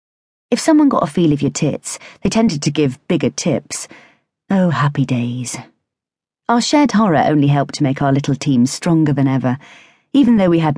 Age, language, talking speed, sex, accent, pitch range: 40-59, English, 190 wpm, female, British, 135-200 Hz